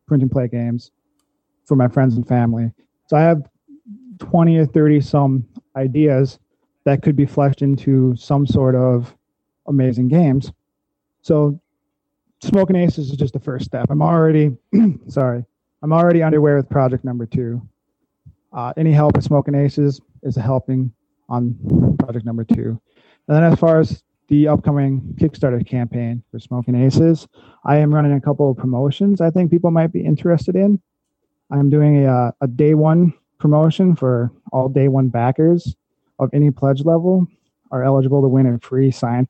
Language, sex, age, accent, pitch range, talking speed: English, male, 30-49, American, 125-155 Hz, 165 wpm